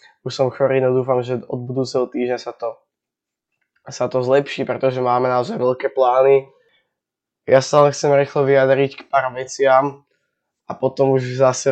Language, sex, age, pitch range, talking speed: Slovak, male, 10-29, 125-135 Hz, 155 wpm